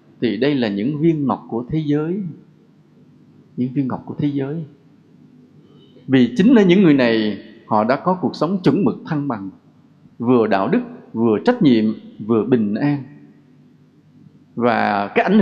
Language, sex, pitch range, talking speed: English, male, 120-185 Hz, 165 wpm